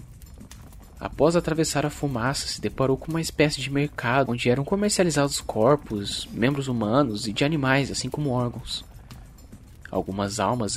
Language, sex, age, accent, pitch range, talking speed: Portuguese, male, 20-39, Brazilian, 95-130 Hz, 140 wpm